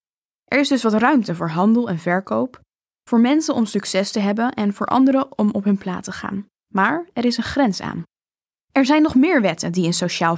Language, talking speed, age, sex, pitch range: Dutch, 220 wpm, 10-29, female, 185-245 Hz